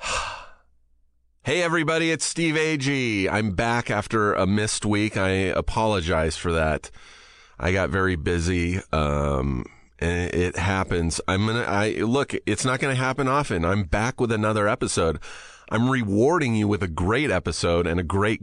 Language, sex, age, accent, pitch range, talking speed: English, male, 30-49, American, 90-115 Hz, 150 wpm